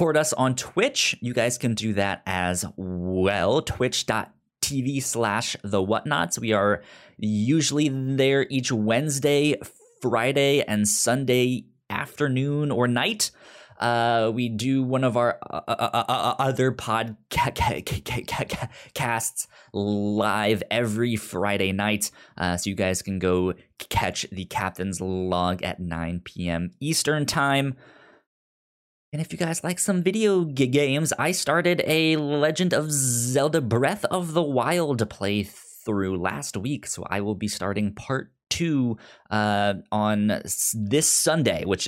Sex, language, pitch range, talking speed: male, English, 100-140 Hz, 130 wpm